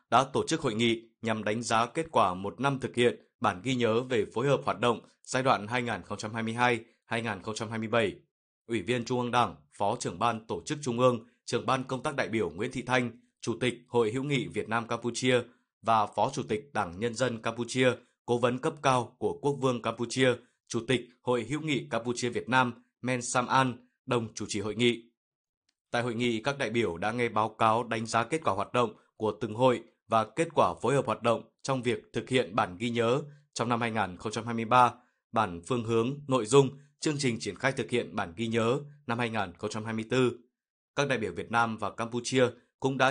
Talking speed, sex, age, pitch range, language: 205 wpm, male, 20-39, 115-130 Hz, Vietnamese